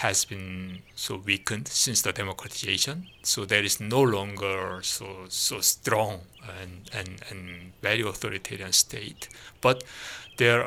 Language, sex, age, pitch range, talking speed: English, male, 60-79, 100-120 Hz, 130 wpm